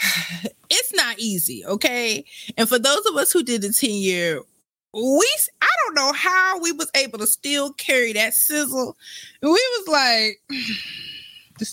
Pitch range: 190-275 Hz